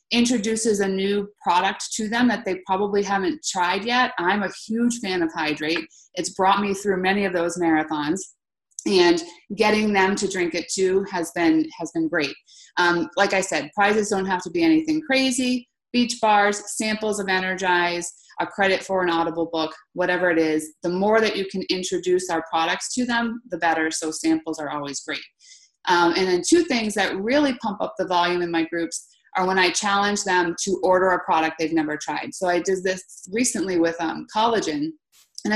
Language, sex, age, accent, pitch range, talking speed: English, female, 30-49, American, 170-215 Hz, 195 wpm